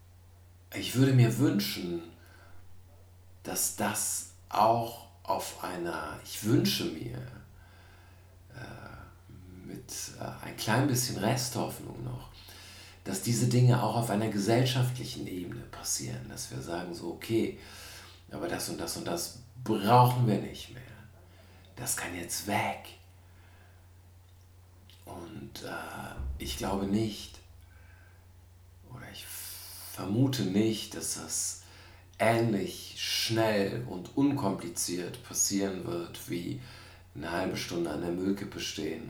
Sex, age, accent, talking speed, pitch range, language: male, 50-69, German, 110 wpm, 90-110 Hz, German